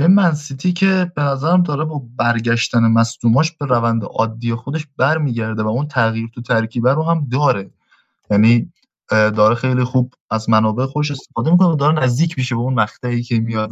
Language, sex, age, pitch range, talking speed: Persian, male, 20-39, 110-140 Hz, 180 wpm